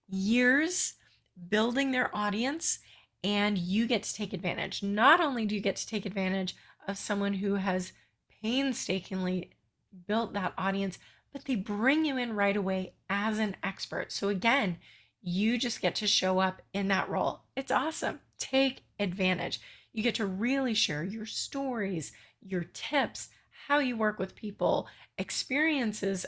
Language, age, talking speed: English, 30-49, 150 wpm